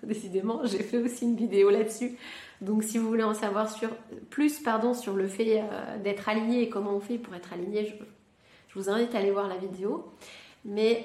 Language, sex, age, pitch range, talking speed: French, female, 30-49, 200-240 Hz, 210 wpm